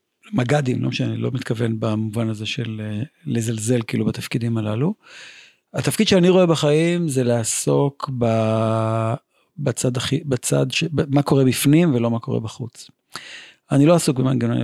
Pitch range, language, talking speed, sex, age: 115-145 Hz, Hebrew, 145 wpm, male, 40-59